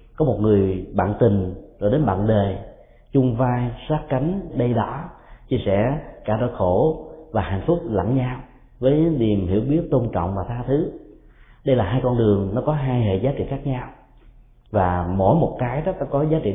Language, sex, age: Vietnamese, male, 30-49